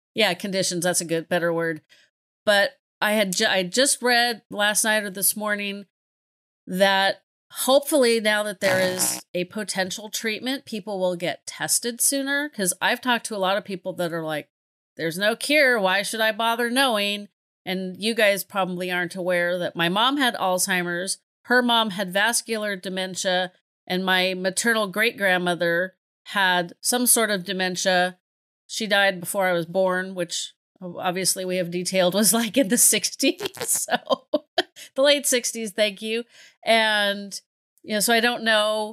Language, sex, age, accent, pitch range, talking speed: English, female, 40-59, American, 180-225 Hz, 165 wpm